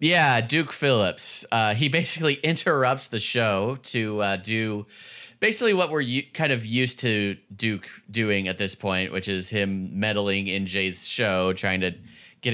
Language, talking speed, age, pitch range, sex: English, 165 wpm, 30-49, 95-125 Hz, male